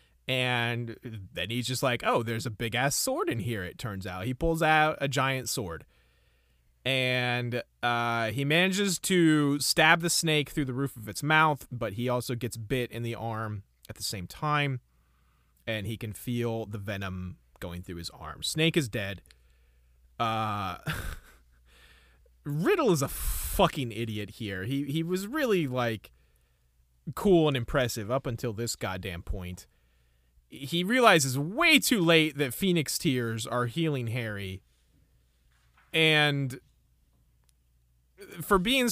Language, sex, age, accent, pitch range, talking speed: English, male, 30-49, American, 100-155 Hz, 145 wpm